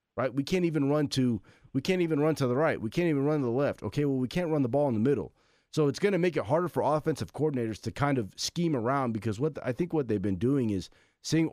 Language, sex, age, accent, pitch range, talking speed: English, male, 30-49, American, 105-135 Hz, 290 wpm